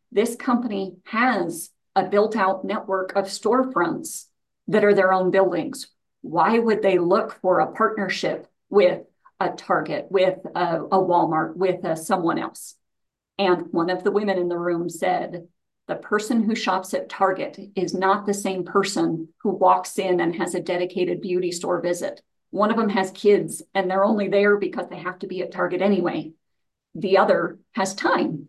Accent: American